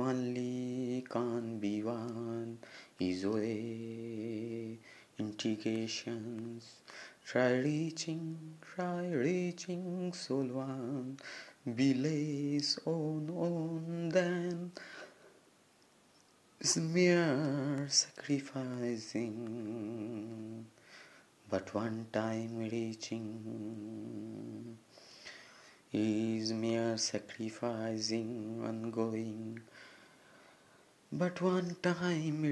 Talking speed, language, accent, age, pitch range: 55 wpm, Bengali, native, 30-49, 110-145 Hz